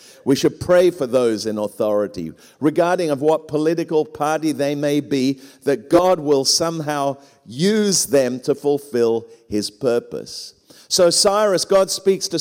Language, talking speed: English, 145 wpm